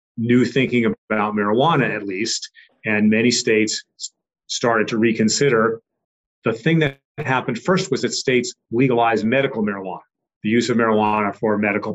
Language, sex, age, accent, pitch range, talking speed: Danish, male, 40-59, American, 105-130 Hz, 145 wpm